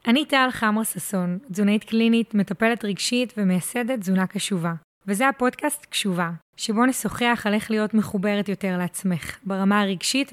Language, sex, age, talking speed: Hebrew, female, 20-39, 140 wpm